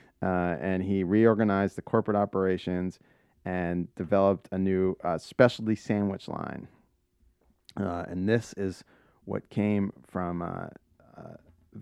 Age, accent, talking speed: 30-49, American, 115 wpm